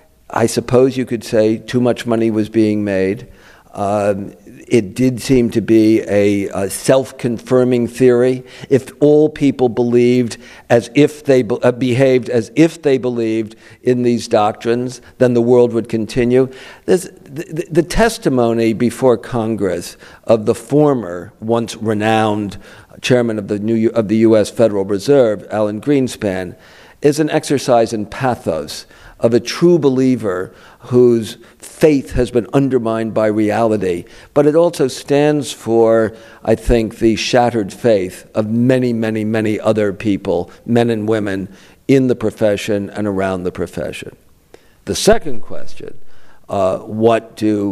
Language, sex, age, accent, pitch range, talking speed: English, male, 50-69, American, 105-125 Hz, 140 wpm